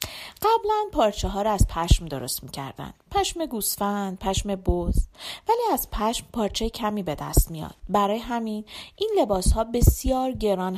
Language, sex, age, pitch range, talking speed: Persian, female, 40-59, 180-270 Hz, 145 wpm